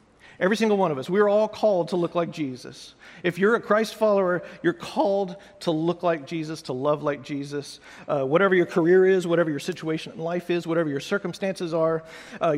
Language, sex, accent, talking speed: English, male, American, 205 wpm